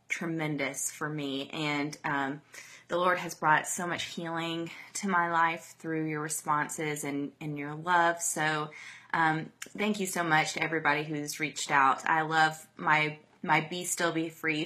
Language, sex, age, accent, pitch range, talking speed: English, female, 20-39, American, 150-175 Hz, 170 wpm